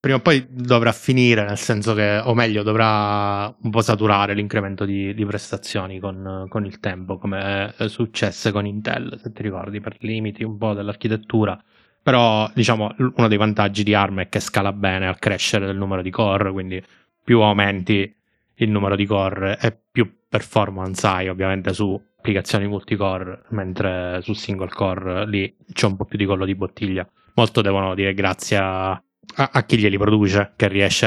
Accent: native